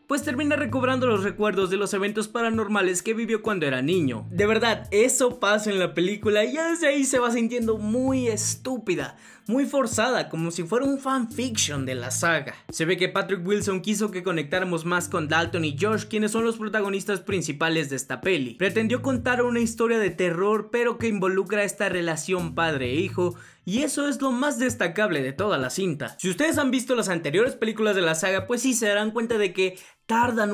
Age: 20-39